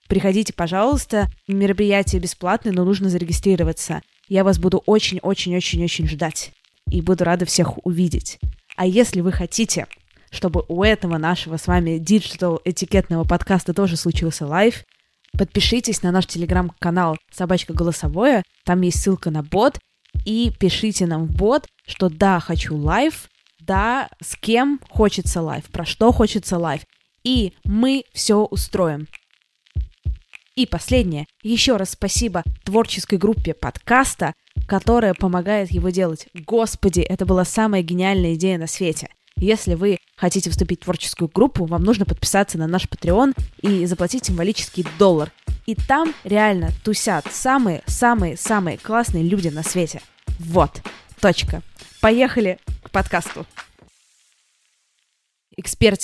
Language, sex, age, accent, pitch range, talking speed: Russian, female, 20-39, native, 170-215 Hz, 125 wpm